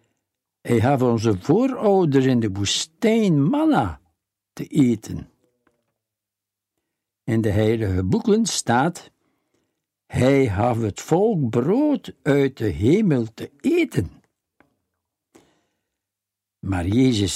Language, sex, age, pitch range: Dutch, male, 60-79, 100-145 Hz